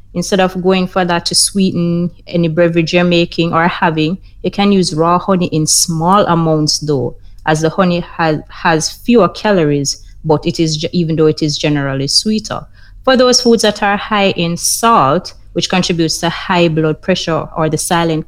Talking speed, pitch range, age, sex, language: 180 wpm, 155-185 Hz, 30-49, female, English